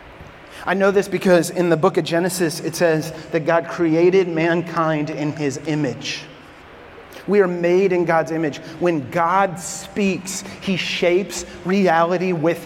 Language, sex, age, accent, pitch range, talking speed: English, male, 30-49, American, 160-195 Hz, 145 wpm